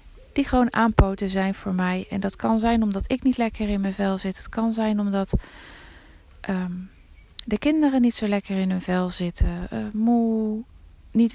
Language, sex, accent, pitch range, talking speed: Dutch, female, Dutch, 190-235 Hz, 180 wpm